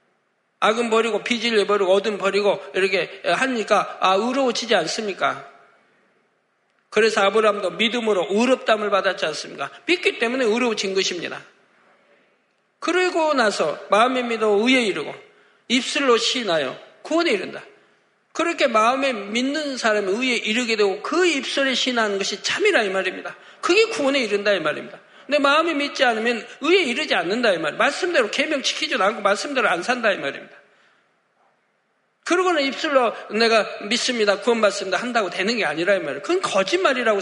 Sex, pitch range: male, 205-265 Hz